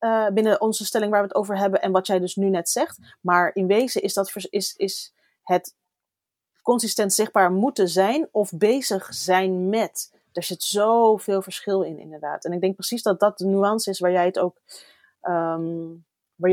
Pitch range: 175-215 Hz